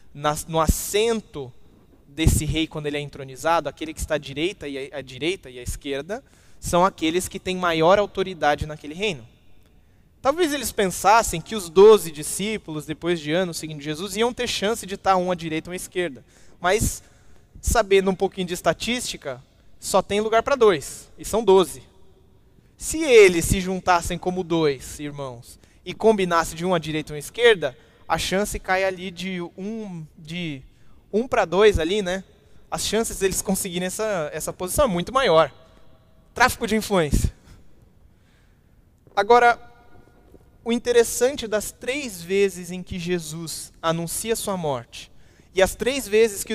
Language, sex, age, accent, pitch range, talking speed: Portuguese, male, 20-39, Brazilian, 150-205 Hz, 160 wpm